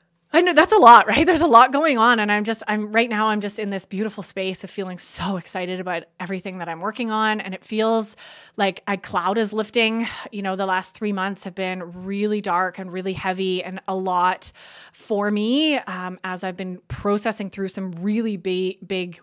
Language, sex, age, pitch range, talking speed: English, female, 20-39, 185-220 Hz, 215 wpm